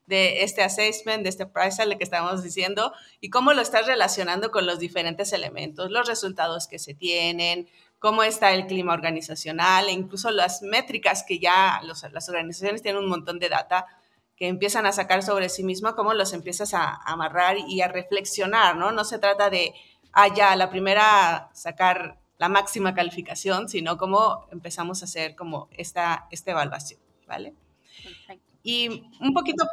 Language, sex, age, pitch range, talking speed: Spanish, female, 30-49, 180-210 Hz, 170 wpm